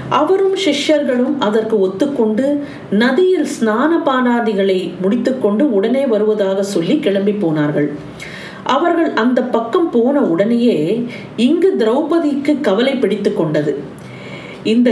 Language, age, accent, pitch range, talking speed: Tamil, 50-69, native, 195-275 Hz, 95 wpm